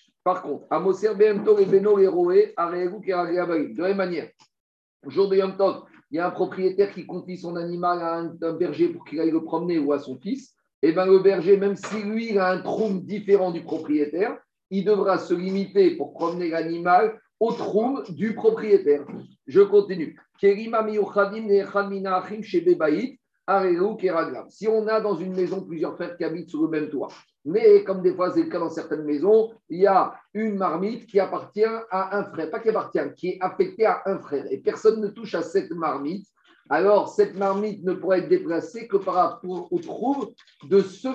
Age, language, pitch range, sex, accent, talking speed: 50-69, French, 175-220 Hz, male, French, 180 wpm